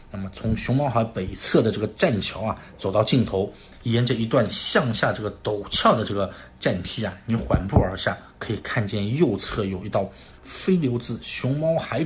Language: Chinese